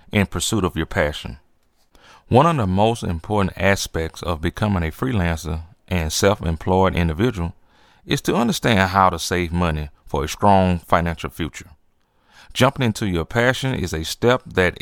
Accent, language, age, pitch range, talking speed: American, English, 30-49, 85-115 Hz, 160 wpm